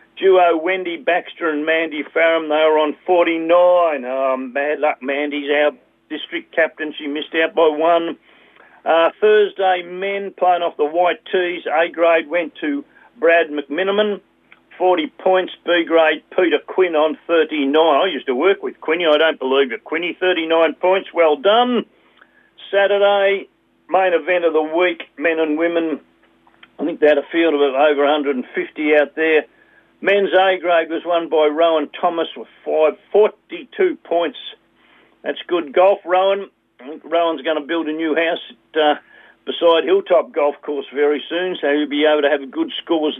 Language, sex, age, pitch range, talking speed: English, male, 50-69, 155-190 Hz, 160 wpm